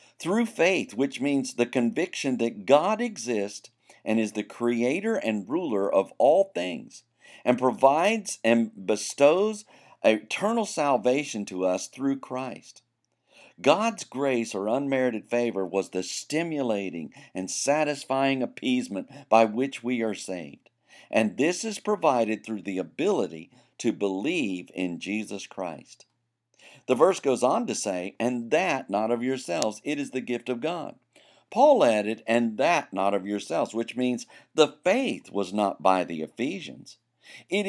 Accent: American